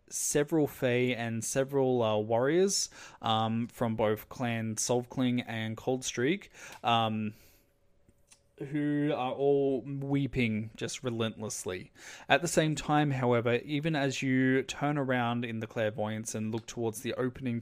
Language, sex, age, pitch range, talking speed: English, male, 20-39, 115-140 Hz, 130 wpm